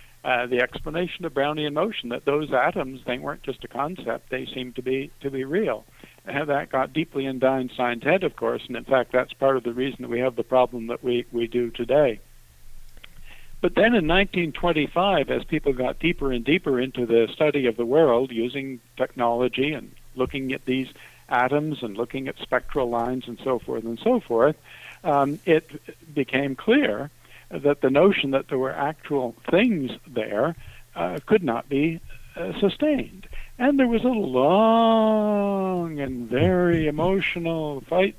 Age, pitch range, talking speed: 60-79, 125-160 Hz, 175 wpm